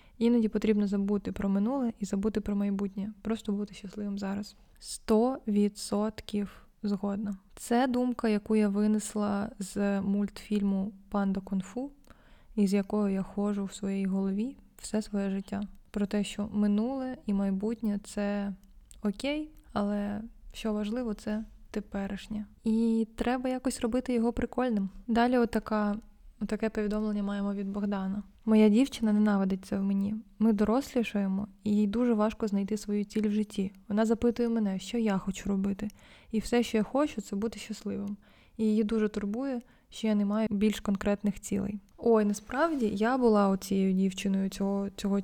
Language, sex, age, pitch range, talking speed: Russian, female, 20-39, 200-225 Hz, 150 wpm